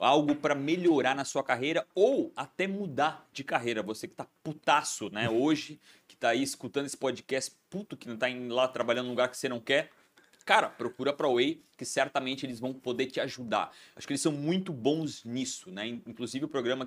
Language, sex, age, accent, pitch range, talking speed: Portuguese, male, 30-49, Brazilian, 120-150 Hz, 205 wpm